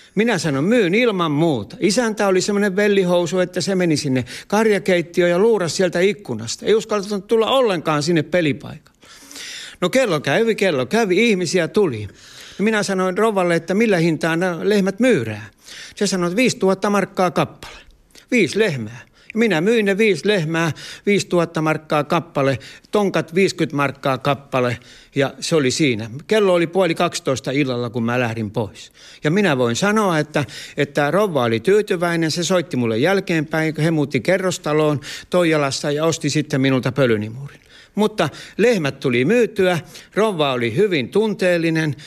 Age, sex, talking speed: 60-79, male, 150 wpm